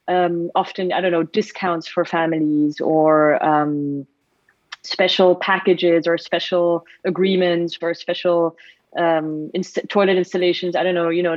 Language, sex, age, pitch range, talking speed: English, female, 30-49, 165-195 Hz, 130 wpm